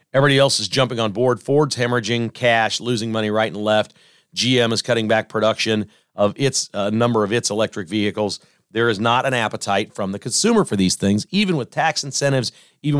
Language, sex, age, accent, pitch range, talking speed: English, male, 40-59, American, 110-160 Hz, 195 wpm